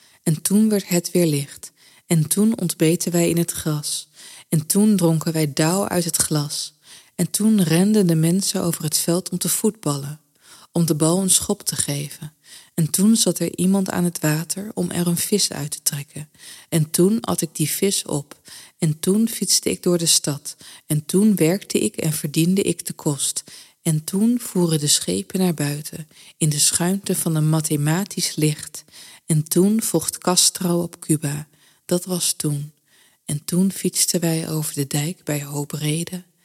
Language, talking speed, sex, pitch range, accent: Dutch, 180 wpm, female, 155-185 Hz, Dutch